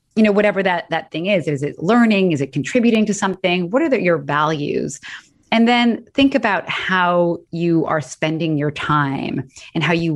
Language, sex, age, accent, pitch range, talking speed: English, female, 20-39, American, 160-210 Hz, 195 wpm